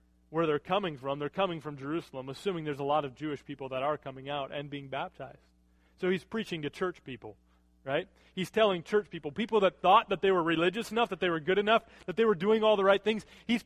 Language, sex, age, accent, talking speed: English, male, 30-49, American, 240 wpm